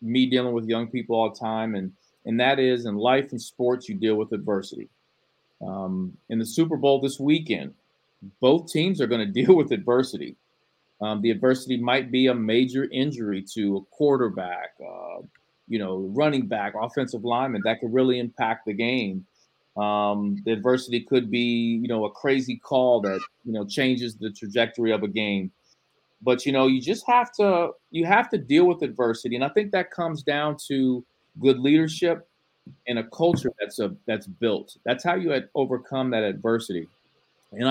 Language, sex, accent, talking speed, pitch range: English, male, American, 185 wpm, 110-135 Hz